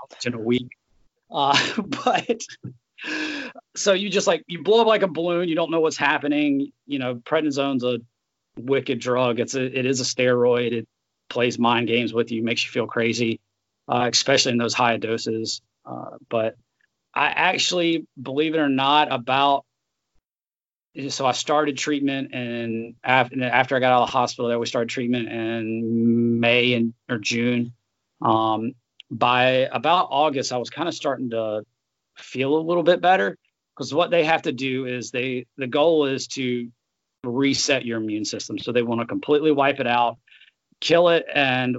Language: English